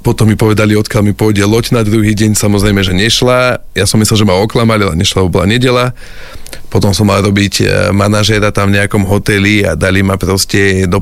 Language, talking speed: Slovak, 205 wpm